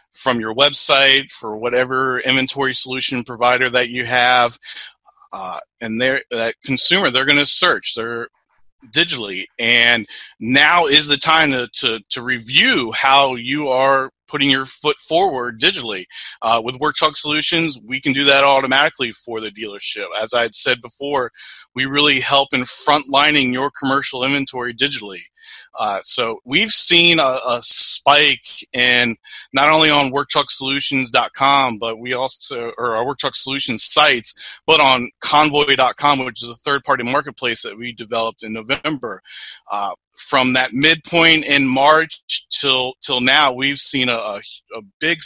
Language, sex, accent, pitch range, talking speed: English, male, American, 120-140 Hz, 150 wpm